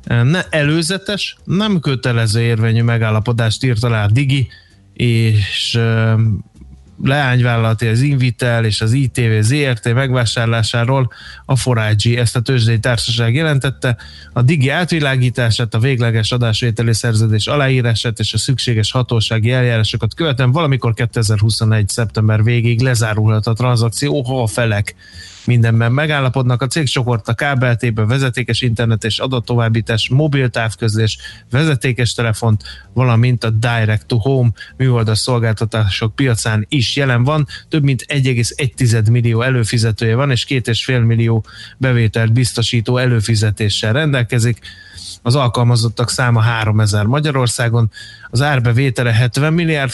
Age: 20-39